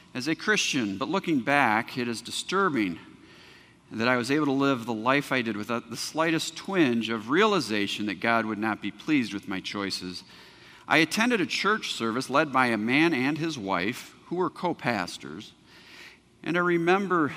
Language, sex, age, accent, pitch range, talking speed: English, male, 50-69, American, 120-175 Hz, 180 wpm